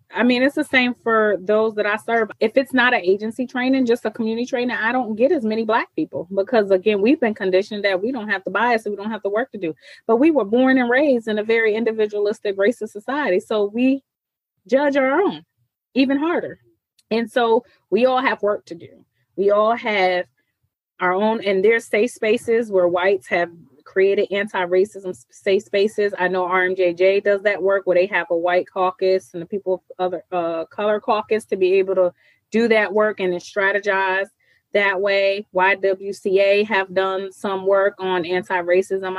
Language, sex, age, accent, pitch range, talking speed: English, female, 20-39, American, 185-225 Hz, 195 wpm